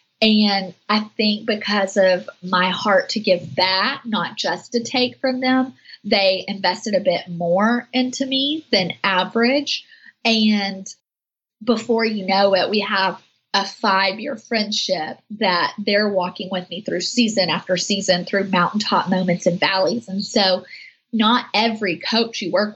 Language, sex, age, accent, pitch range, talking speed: English, female, 30-49, American, 185-225 Hz, 150 wpm